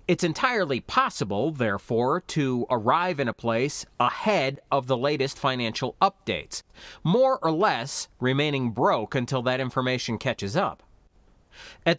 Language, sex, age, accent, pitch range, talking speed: English, male, 40-59, American, 120-170 Hz, 130 wpm